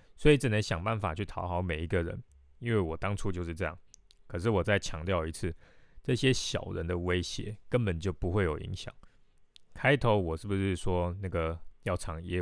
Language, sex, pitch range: Chinese, male, 85-110 Hz